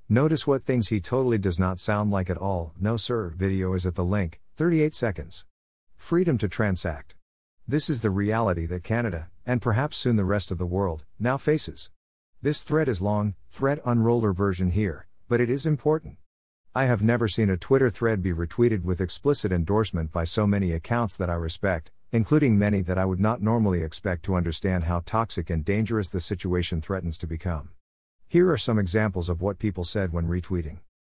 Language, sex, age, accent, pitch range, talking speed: English, male, 50-69, American, 90-120 Hz, 190 wpm